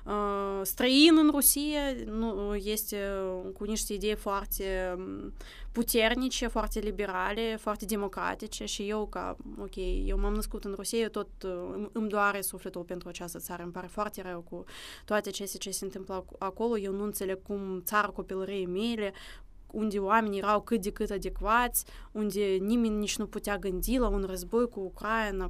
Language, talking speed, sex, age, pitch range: Romanian, 160 wpm, female, 20-39, 195-225 Hz